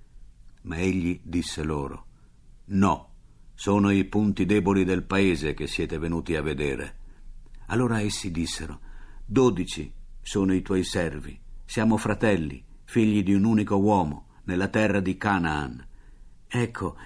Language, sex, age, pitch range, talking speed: Italian, male, 50-69, 85-110 Hz, 125 wpm